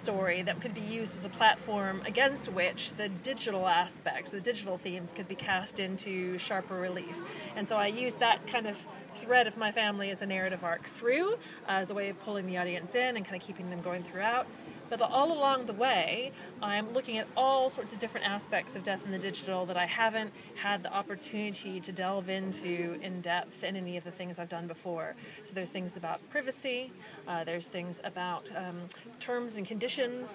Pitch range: 185-230 Hz